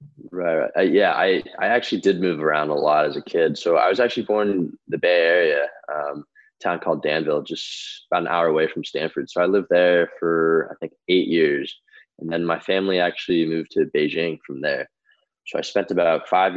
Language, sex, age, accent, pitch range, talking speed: English, male, 20-39, American, 80-100 Hz, 215 wpm